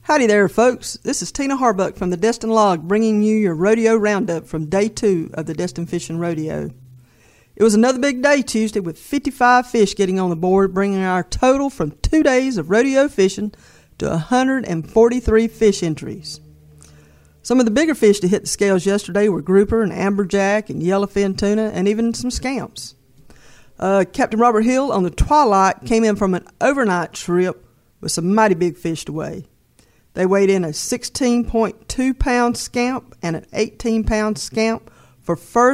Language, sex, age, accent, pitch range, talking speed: English, female, 50-69, American, 180-235 Hz, 170 wpm